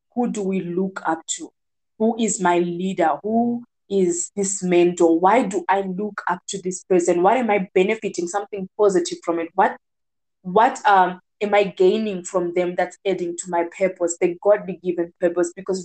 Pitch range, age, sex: 170-205 Hz, 20-39, female